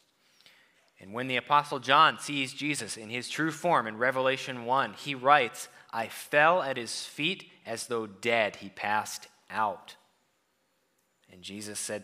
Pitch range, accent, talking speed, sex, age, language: 100-135 Hz, American, 150 wpm, male, 30-49, English